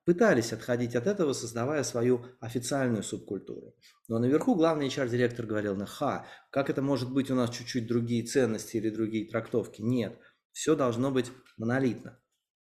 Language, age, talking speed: Russian, 30-49, 145 wpm